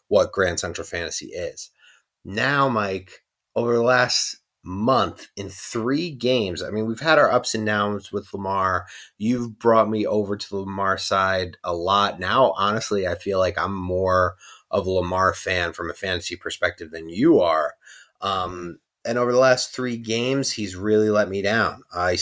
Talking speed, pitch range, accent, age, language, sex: 175 wpm, 90-115 Hz, American, 30-49, English, male